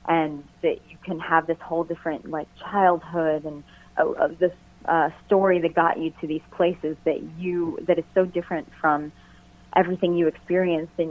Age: 30-49